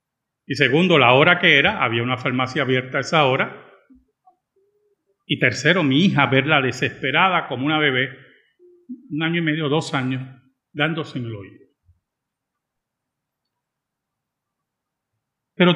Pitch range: 130-195 Hz